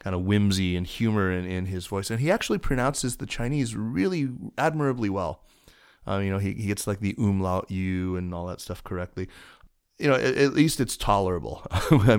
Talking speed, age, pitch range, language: 200 wpm, 30-49, 90-105 Hz, English